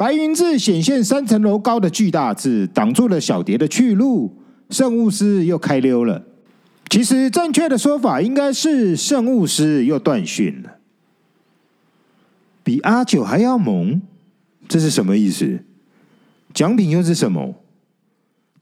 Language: Chinese